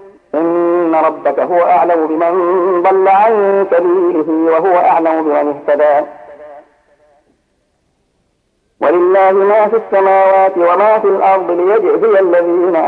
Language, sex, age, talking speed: Arabic, male, 50-69, 100 wpm